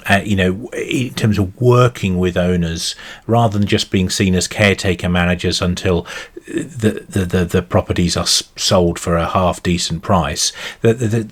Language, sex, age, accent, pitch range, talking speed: English, male, 40-59, British, 85-100 Hz, 175 wpm